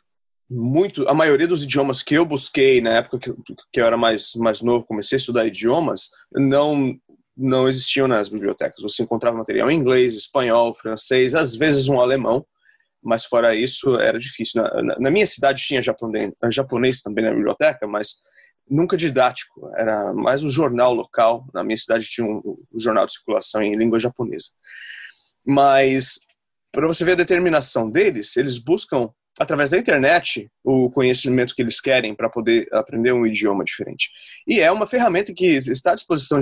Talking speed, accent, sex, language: 170 wpm, Brazilian, male, English